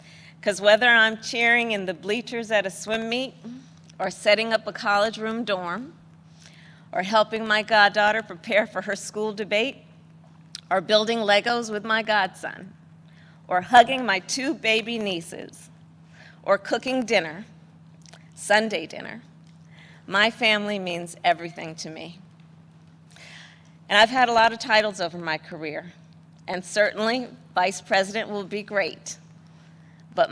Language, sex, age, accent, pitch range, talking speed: English, female, 40-59, American, 165-220 Hz, 135 wpm